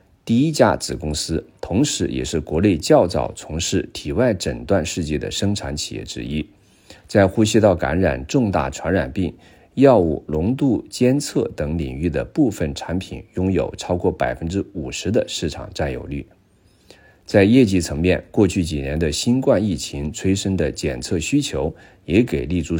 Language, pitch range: Chinese, 75-95 Hz